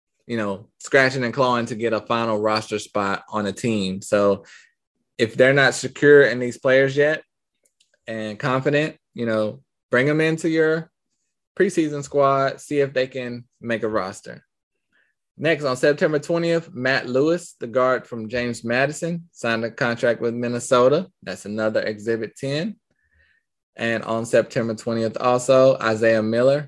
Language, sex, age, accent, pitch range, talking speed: English, male, 20-39, American, 110-140 Hz, 150 wpm